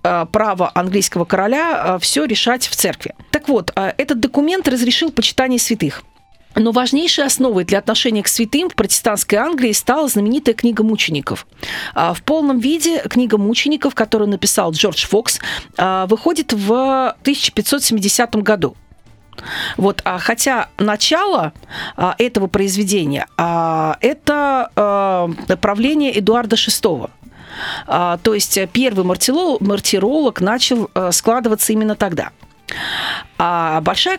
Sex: female